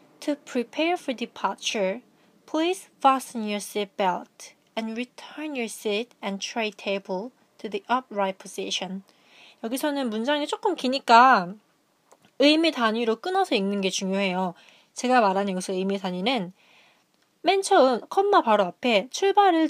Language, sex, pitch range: Korean, female, 200-290 Hz